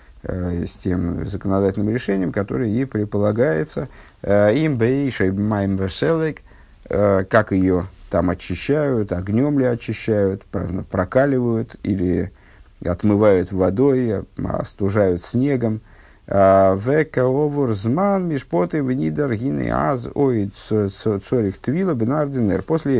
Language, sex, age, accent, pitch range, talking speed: Russian, male, 50-69, native, 90-125 Hz, 70 wpm